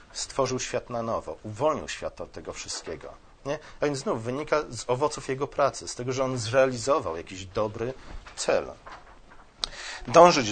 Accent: native